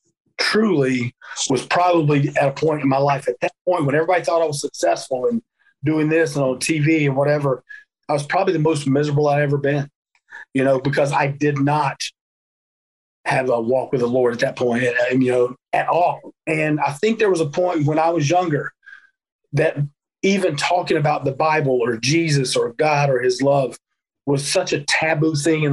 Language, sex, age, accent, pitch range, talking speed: English, male, 40-59, American, 140-165 Hz, 200 wpm